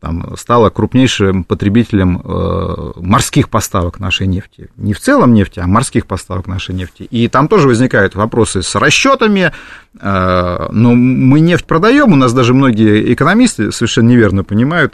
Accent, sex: native, male